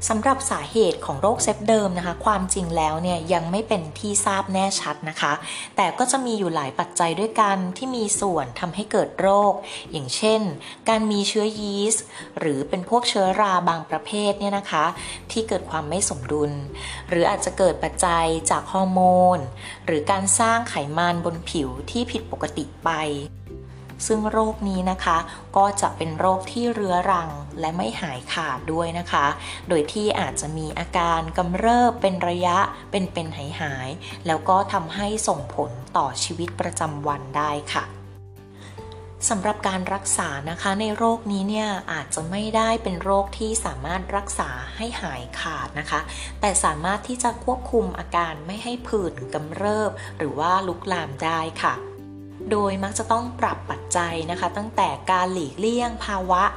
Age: 20-39